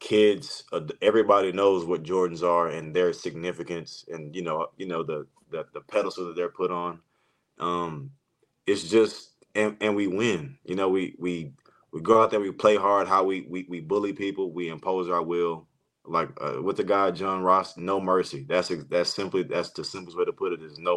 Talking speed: 205 wpm